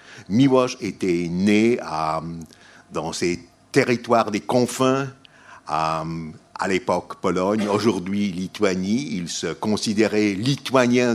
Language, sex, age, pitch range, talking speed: French, male, 60-79, 95-125 Hz, 100 wpm